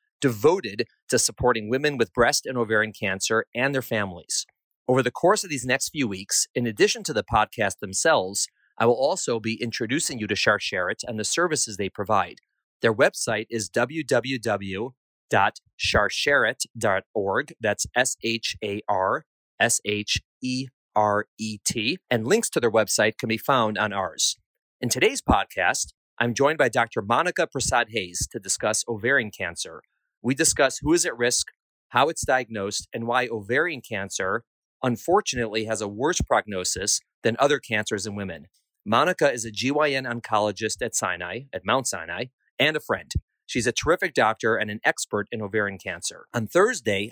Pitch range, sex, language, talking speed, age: 105-125 Hz, male, English, 150 wpm, 30-49